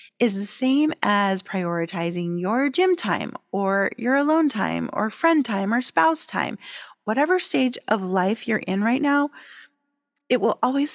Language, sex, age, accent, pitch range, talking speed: English, female, 30-49, American, 190-275 Hz, 160 wpm